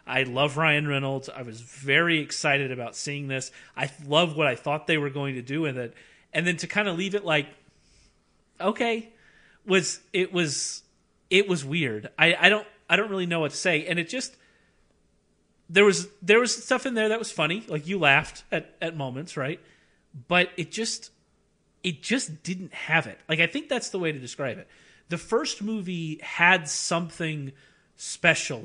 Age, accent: 30-49, American